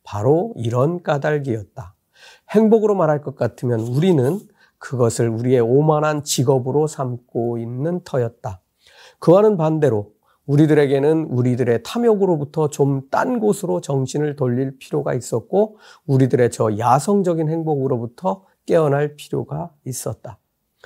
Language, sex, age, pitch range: Korean, male, 40-59, 120-170 Hz